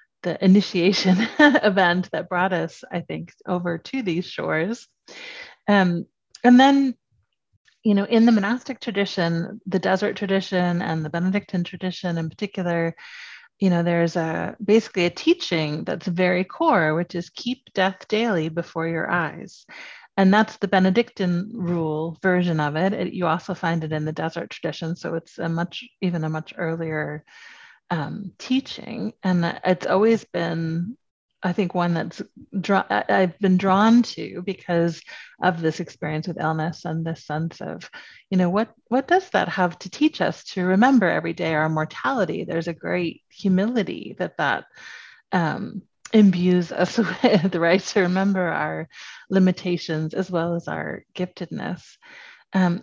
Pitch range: 170-215 Hz